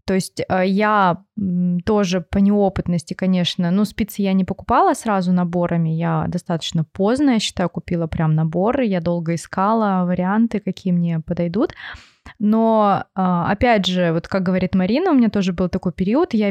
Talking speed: 160 wpm